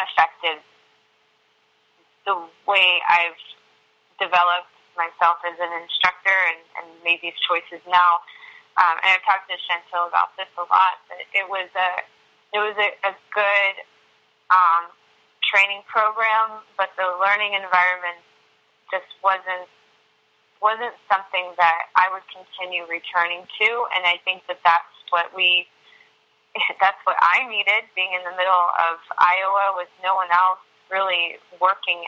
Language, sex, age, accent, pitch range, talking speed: English, female, 20-39, American, 170-195 Hz, 140 wpm